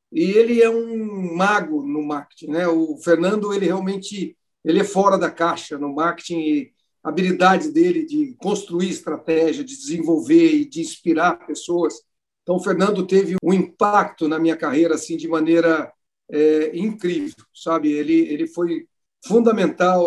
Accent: Brazilian